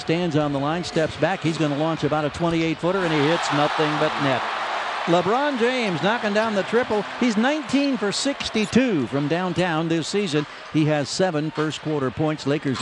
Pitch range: 150-195 Hz